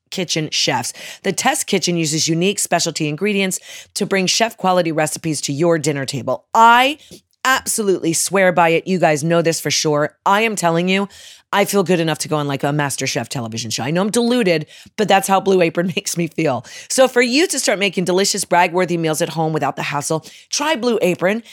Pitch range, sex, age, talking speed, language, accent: 160-215 Hz, female, 30-49, 205 wpm, English, American